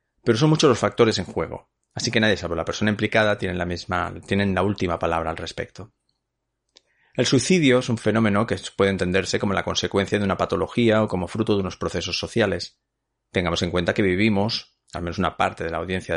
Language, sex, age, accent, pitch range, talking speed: Spanish, male, 30-49, Spanish, 90-115 Hz, 200 wpm